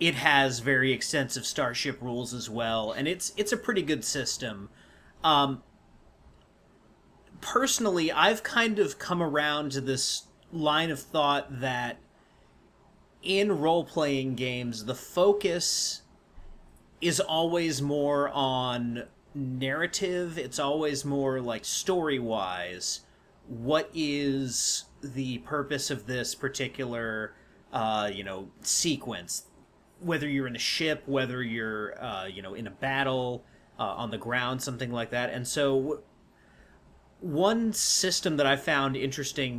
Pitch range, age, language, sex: 120-150 Hz, 30-49, English, male